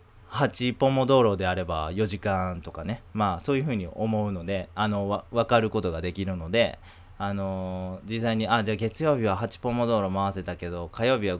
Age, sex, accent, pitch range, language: 20-39, male, native, 90-115 Hz, Japanese